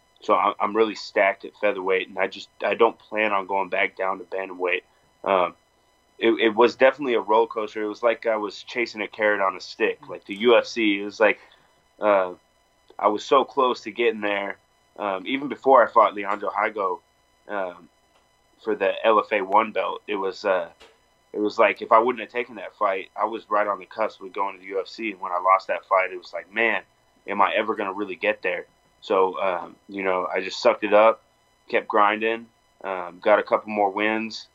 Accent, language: American, English